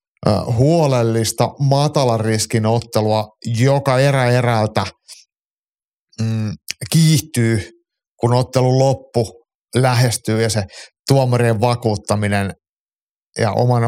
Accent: native